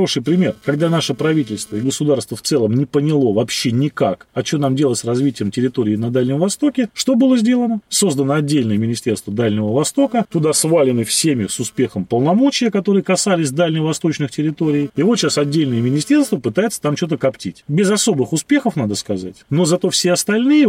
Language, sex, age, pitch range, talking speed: Russian, male, 30-49, 130-195 Hz, 170 wpm